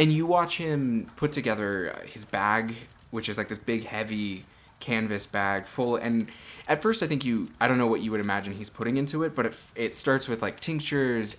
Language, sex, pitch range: English, male, 105-130 Hz